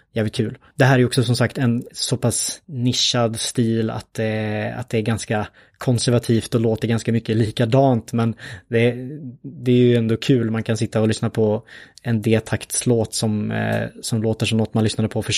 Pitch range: 110-125 Hz